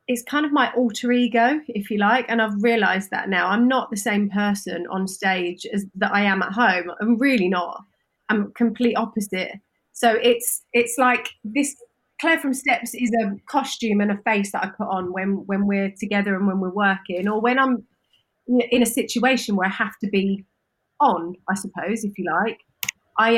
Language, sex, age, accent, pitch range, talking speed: English, female, 30-49, British, 200-245 Hz, 200 wpm